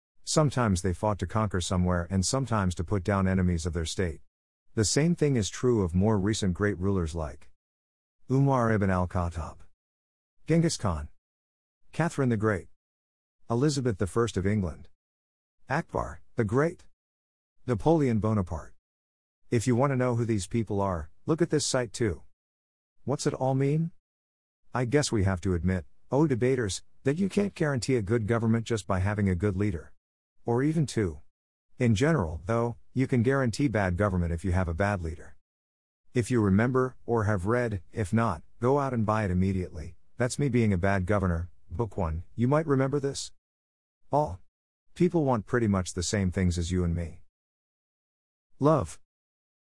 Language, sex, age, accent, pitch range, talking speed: English, male, 50-69, American, 85-120 Hz, 165 wpm